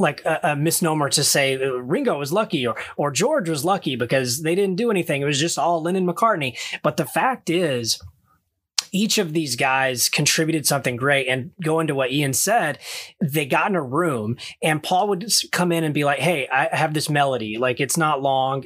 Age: 30-49